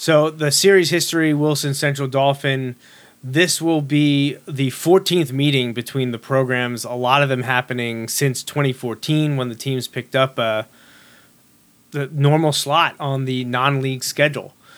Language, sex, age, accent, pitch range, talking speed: English, male, 30-49, American, 125-150 Hz, 160 wpm